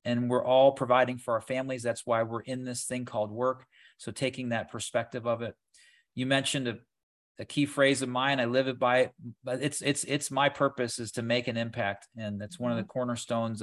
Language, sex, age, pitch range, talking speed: English, male, 40-59, 110-130 Hz, 225 wpm